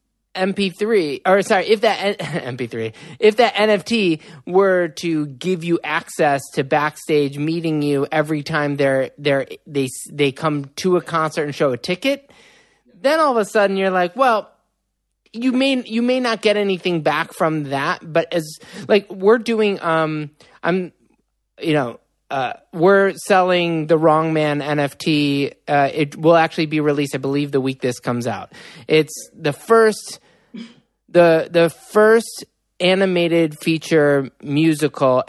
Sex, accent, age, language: male, American, 20-39, English